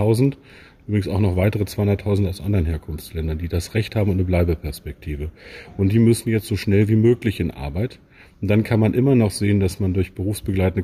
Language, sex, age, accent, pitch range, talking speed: German, male, 40-59, German, 90-110 Hz, 200 wpm